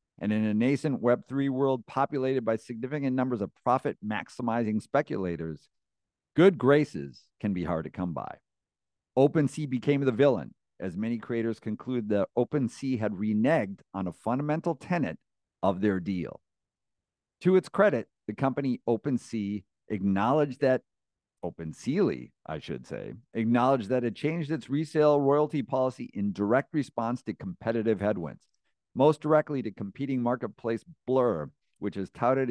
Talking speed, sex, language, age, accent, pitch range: 140 wpm, male, English, 50-69, American, 105-135 Hz